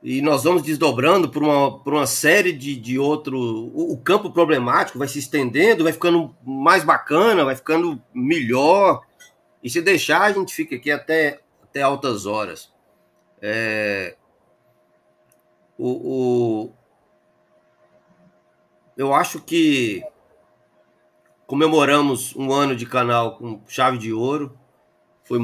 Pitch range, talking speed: 100-140 Hz, 125 wpm